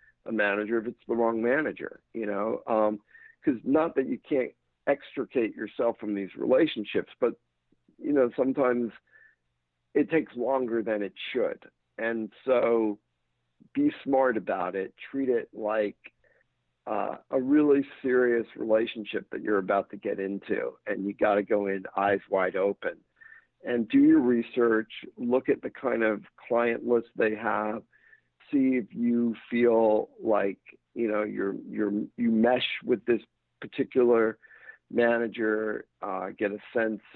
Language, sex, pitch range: English, male, 105-125 Hz